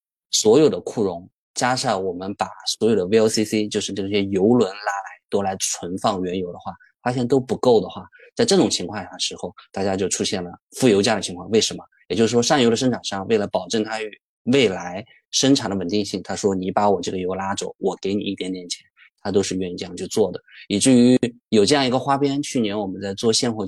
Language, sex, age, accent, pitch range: Chinese, male, 20-39, native, 100-130 Hz